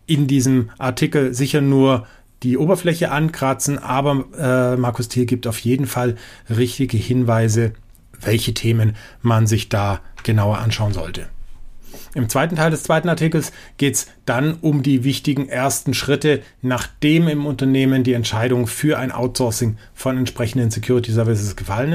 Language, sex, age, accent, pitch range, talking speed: German, male, 30-49, German, 115-145 Hz, 145 wpm